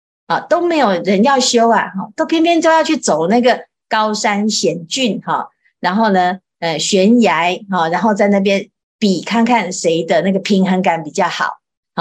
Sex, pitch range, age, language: female, 190-255 Hz, 50-69, Chinese